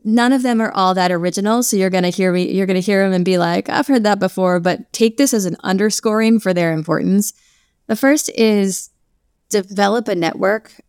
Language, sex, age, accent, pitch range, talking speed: English, female, 20-39, American, 175-215 Hz, 210 wpm